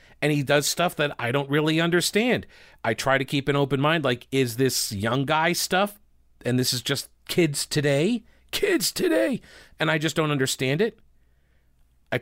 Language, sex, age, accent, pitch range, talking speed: English, male, 40-59, American, 120-155 Hz, 180 wpm